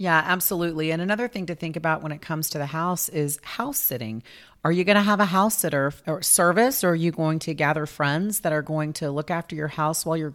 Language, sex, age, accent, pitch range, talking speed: English, female, 40-59, American, 150-180 Hz, 255 wpm